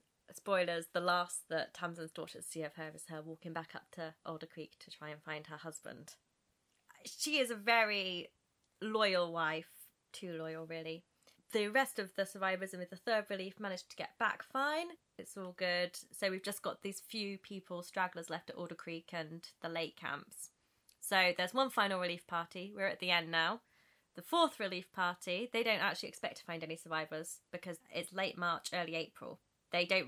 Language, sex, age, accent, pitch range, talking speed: English, female, 20-39, British, 170-225 Hz, 195 wpm